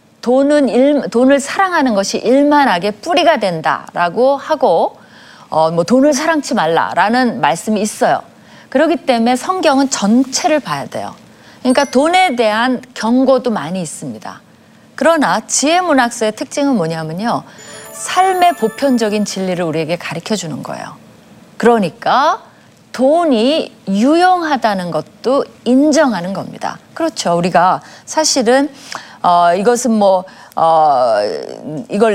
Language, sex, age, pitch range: Korean, female, 40-59, 200-290 Hz